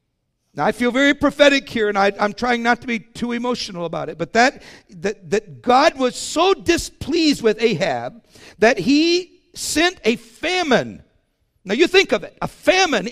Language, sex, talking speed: English, male, 180 wpm